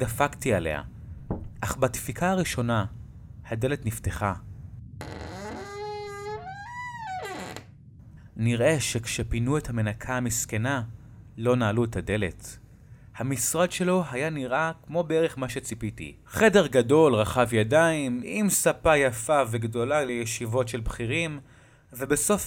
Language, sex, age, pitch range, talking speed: Hebrew, male, 30-49, 110-140 Hz, 95 wpm